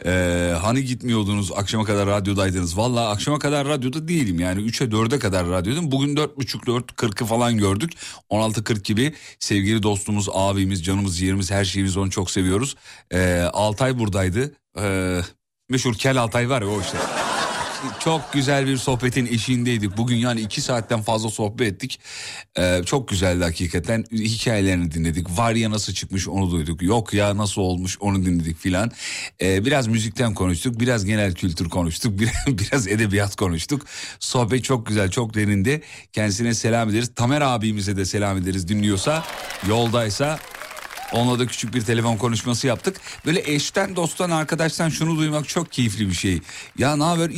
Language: Turkish